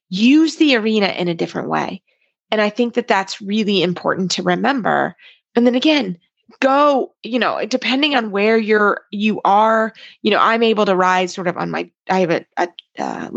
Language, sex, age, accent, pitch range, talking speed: English, female, 30-49, American, 185-260 Hz, 195 wpm